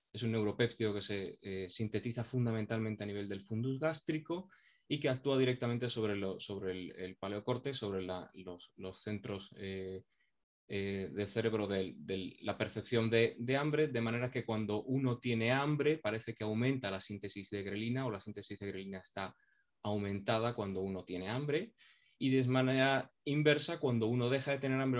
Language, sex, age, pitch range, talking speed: Spanish, male, 20-39, 100-125 Hz, 175 wpm